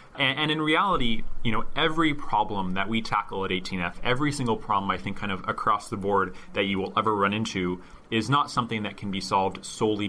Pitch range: 95-120 Hz